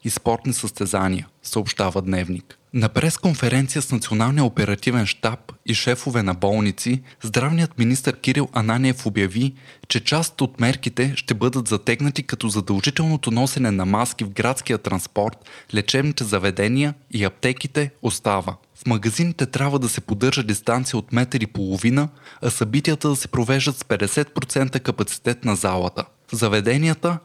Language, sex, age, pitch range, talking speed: Bulgarian, male, 20-39, 110-140 Hz, 135 wpm